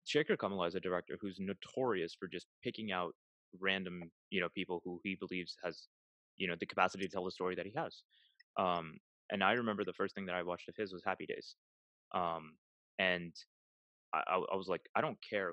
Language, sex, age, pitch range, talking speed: Telugu, male, 20-39, 90-115 Hz, 200 wpm